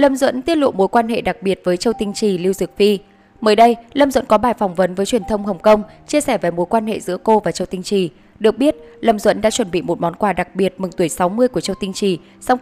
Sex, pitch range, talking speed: female, 185-235 Hz, 290 wpm